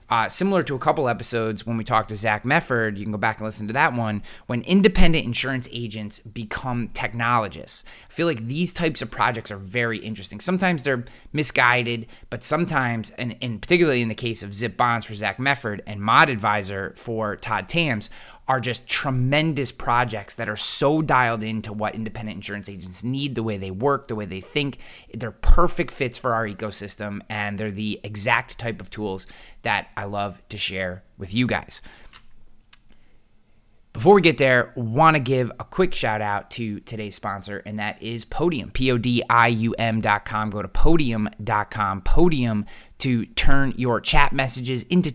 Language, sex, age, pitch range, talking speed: English, male, 20-39, 105-130 Hz, 175 wpm